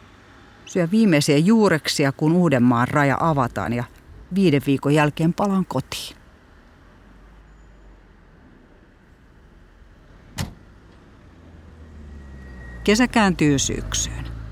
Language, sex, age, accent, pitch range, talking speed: Finnish, female, 50-69, native, 115-185 Hz, 70 wpm